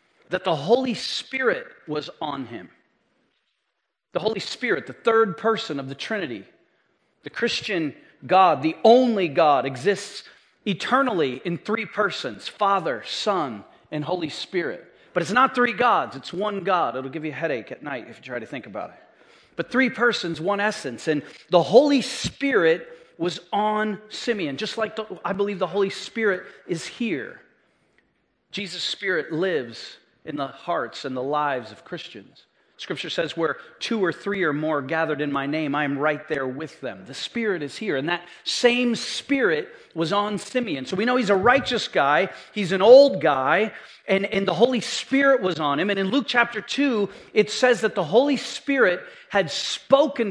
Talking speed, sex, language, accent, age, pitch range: 175 wpm, male, English, American, 40-59, 175-245 Hz